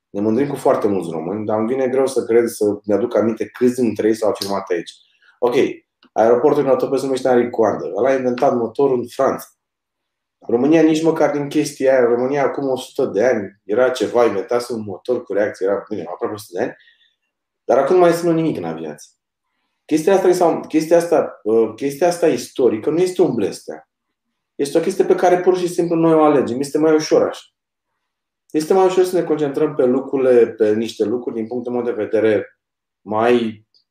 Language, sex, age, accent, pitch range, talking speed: Romanian, male, 20-39, native, 125-170 Hz, 195 wpm